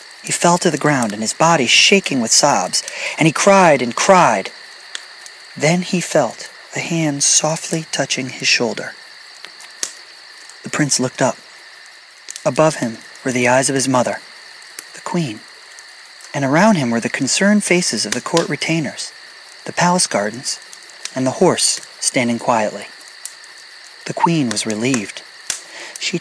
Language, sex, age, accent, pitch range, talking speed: English, male, 40-59, American, 135-195 Hz, 145 wpm